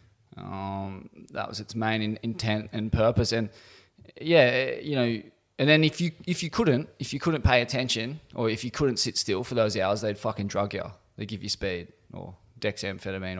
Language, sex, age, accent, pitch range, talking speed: English, male, 20-39, Australian, 105-125 Hz, 200 wpm